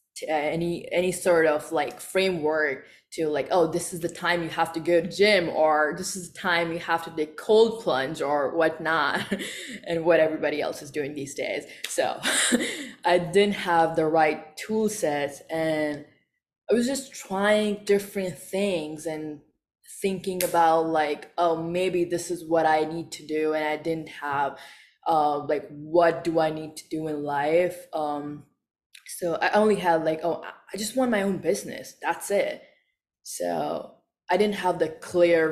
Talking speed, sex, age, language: 175 wpm, female, 20-39, English